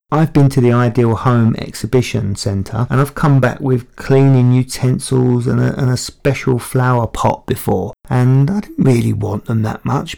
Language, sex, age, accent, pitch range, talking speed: English, male, 40-59, British, 115-140 Hz, 175 wpm